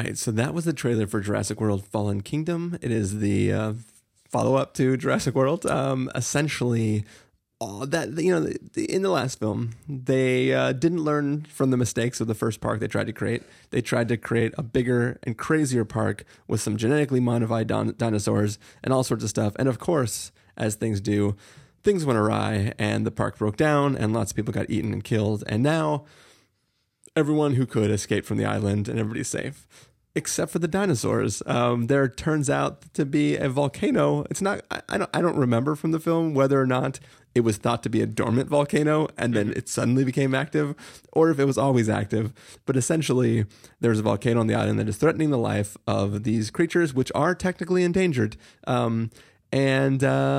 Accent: American